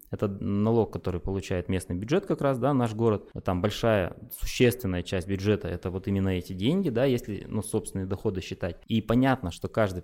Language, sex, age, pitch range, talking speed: Russian, male, 20-39, 95-120 Hz, 185 wpm